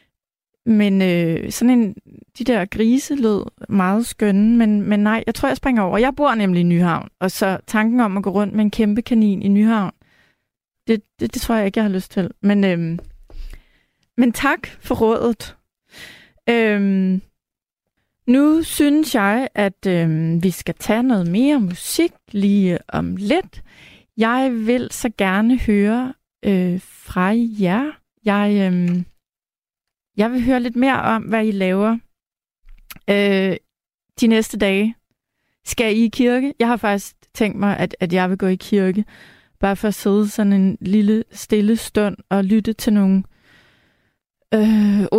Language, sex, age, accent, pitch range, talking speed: Danish, female, 30-49, native, 190-230 Hz, 160 wpm